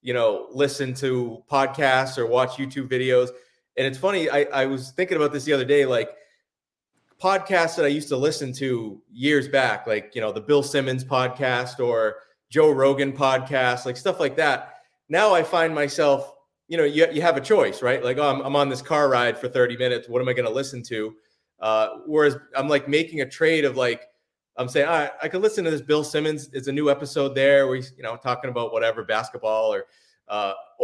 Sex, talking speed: male, 215 wpm